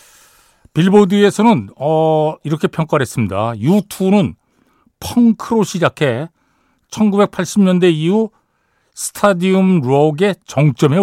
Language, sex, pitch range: Korean, male, 130-205 Hz